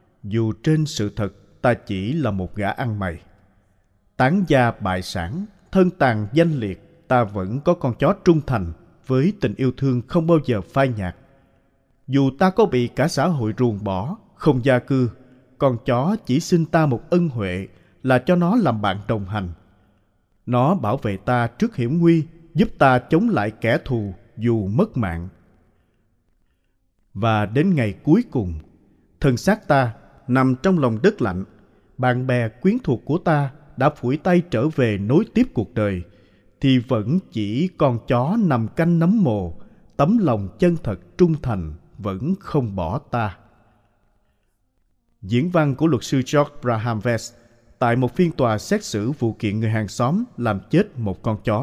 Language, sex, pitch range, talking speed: Vietnamese, male, 105-150 Hz, 170 wpm